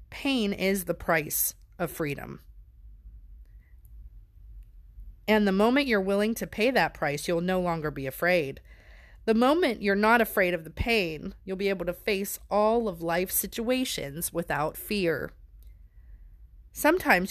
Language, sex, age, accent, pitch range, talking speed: English, female, 30-49, American, 170-225 Hz, 140 wpm